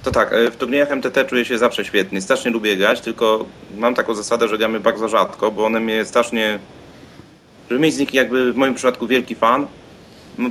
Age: 30-49